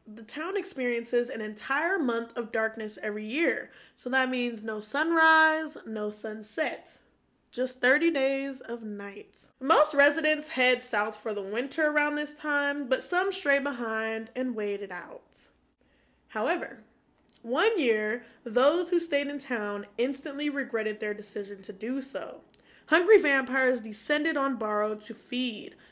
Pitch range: 220-295 Hz